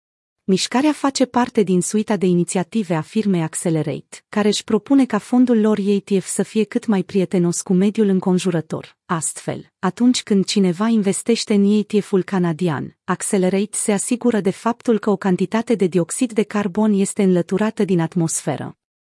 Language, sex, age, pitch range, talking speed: Romanian, female, 30-49, 175-225 Hz, 155 wpm